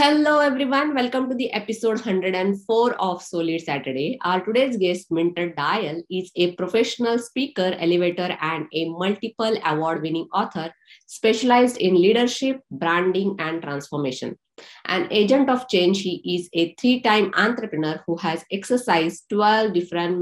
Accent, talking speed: Indian, 135 wpm